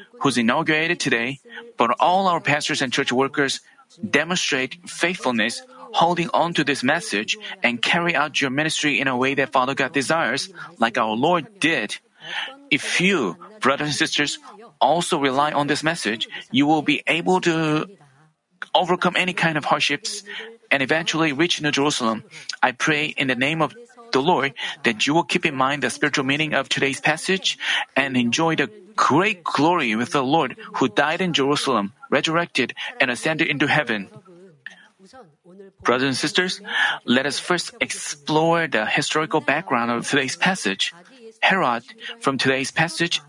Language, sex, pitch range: Korean, male, 135-175 Hz